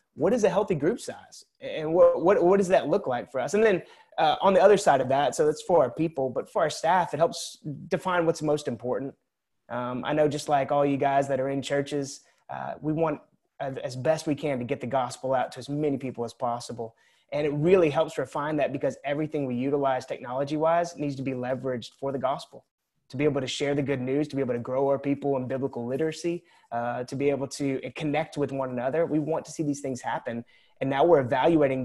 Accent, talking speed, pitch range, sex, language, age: American, 240 wpm, 135-165 Hz, male, English, 30-49